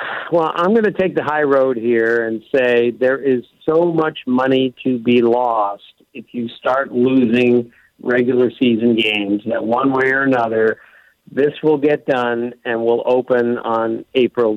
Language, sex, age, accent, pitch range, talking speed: English, male, 50-69, American, 125-160 Hz, 165 wpm